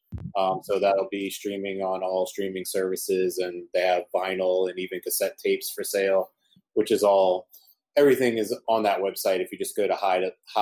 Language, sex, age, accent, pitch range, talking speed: English, male, 30-49, American, 95-105 Hz, 200 wpm